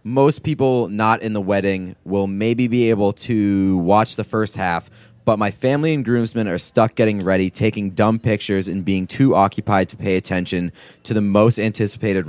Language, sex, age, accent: English, male, 20-39, American